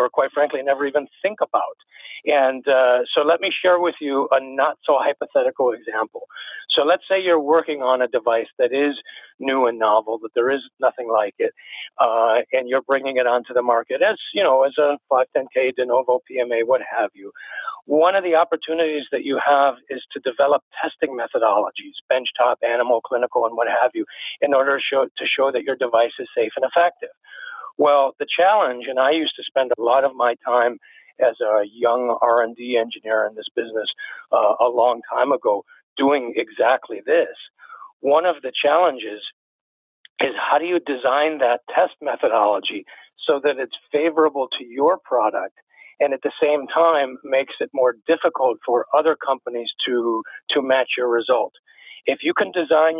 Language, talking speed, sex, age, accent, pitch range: English, 180 wpm, male, 50-69, American, 125-165 Hz